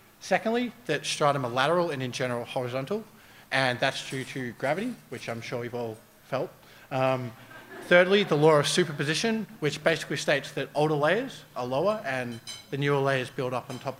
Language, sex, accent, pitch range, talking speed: English, male, Australian, 125-160 Hz, 180 wpm